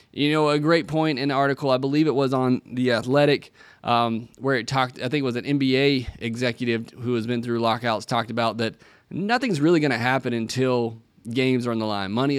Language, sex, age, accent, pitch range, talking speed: English, male, 20-39, American, 120-145 Hz, 225 wpm